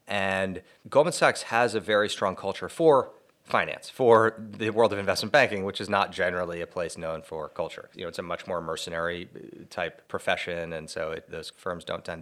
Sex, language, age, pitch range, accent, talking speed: male, English, 30-49, 85-105 Hz, American, 195 wpm